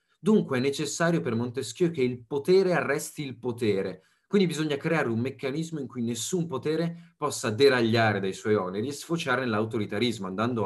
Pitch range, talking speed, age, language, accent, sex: 110-145 Hz, 165 wpm, 30-49, Italian, native, male